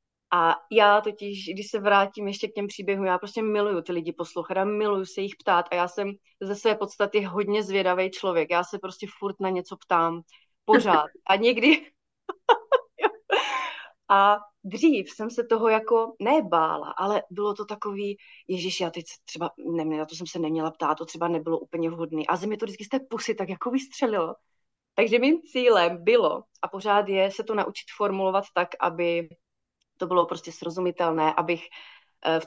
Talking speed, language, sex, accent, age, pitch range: 175 wpm, Czech, female, native, 30-49, 175-210 Hz